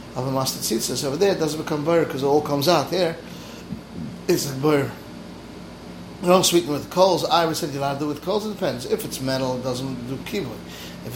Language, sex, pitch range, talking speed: English, male, 130-170 Hz, 235 wpm